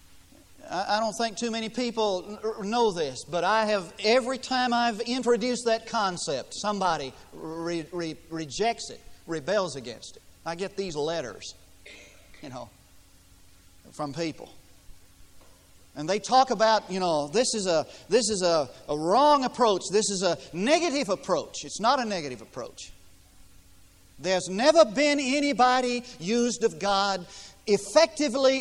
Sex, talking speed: male, 140 wpm